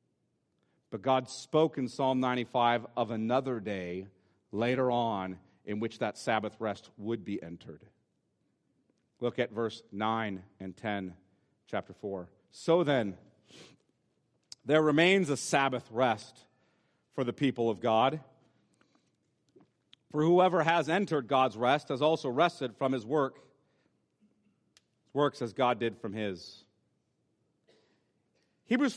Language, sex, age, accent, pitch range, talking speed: English, male, 40-59, American, 120-170 Hz, 120 wpm